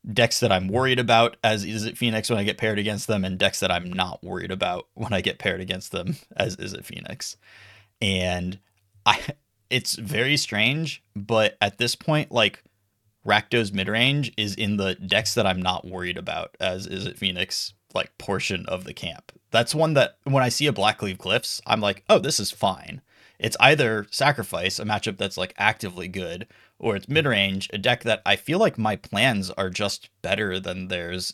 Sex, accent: male, American